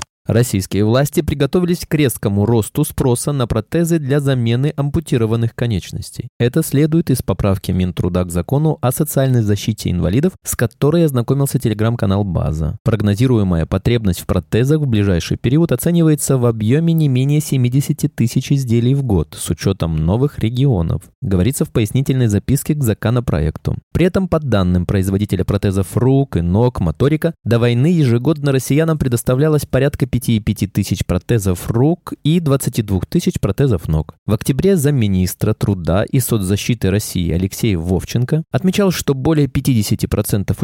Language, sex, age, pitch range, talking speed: Russian, male, 20-39, 100-145 Hz, 140 wpm